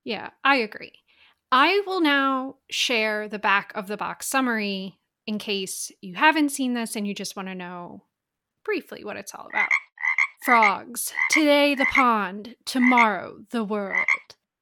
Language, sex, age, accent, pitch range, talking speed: English, female, 30-49, American, 200-255 Hz, 150 wpm